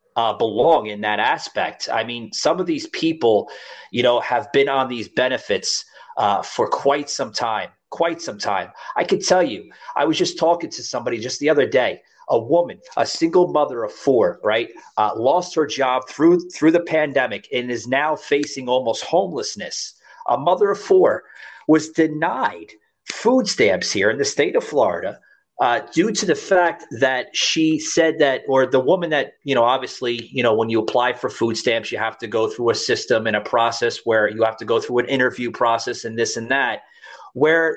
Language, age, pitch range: English, 30-49, 120-180 Hz